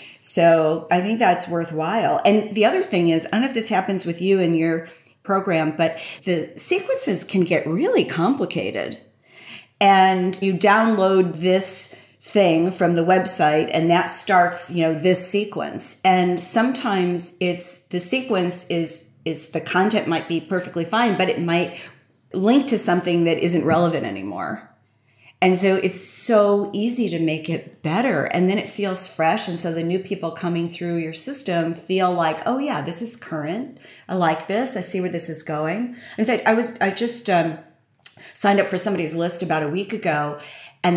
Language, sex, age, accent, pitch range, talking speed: English, female, 40-59, American, 170-220 Hz, 180 wpm